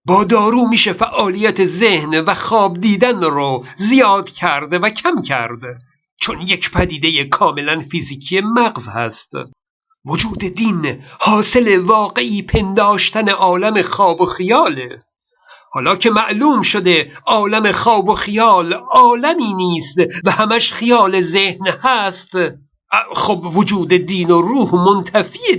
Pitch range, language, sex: 180-225 Hz, Persian, male